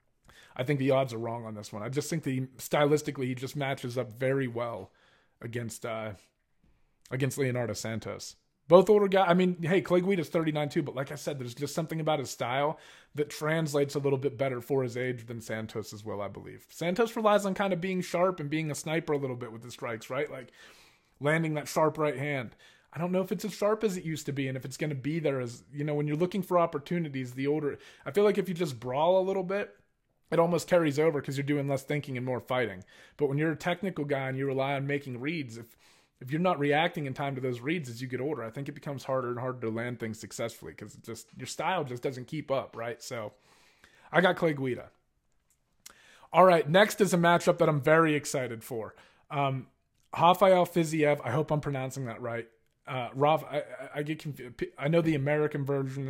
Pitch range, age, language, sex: 125-165 Hz, 30-49, English, male